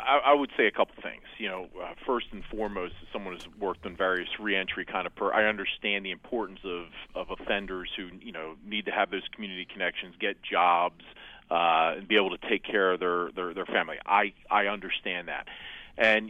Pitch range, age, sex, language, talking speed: 95-120 Hz, 40-59, male, English, 205 wpm